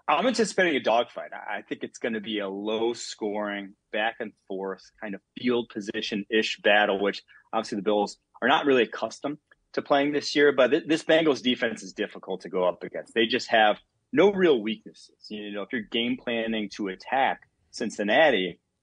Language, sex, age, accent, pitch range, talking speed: English, male, 30-49, American, 105-125 Hz, 170 wpm